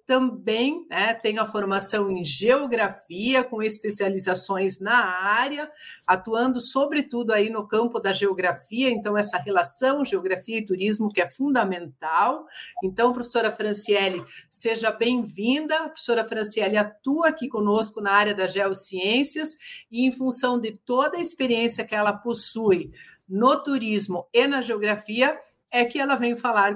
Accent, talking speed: Brazilian, 140 wpm